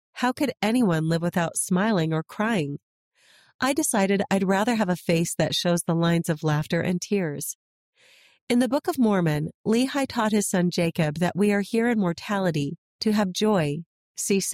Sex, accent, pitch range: female, American, 170-205 Hz